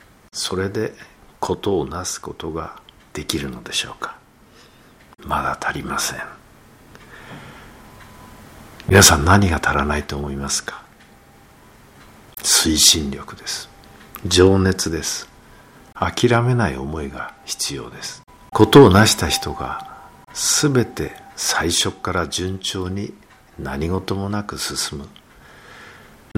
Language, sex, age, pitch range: Japanese, male, 60-79, 80-105 Hz